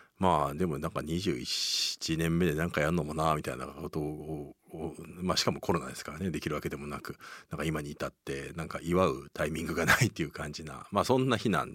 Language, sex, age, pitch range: Japanese, male, 40-59, 80-115 Hz